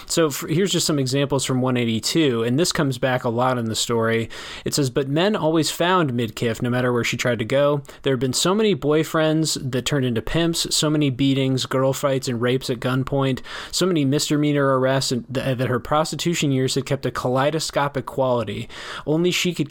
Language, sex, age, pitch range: English, male, 20-39, 120-145 Hz